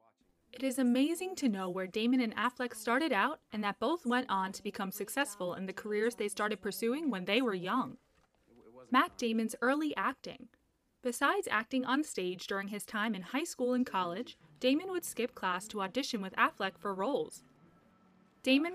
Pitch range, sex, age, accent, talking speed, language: 205-265 Hz, female, 20-39, American, 180 wpm, English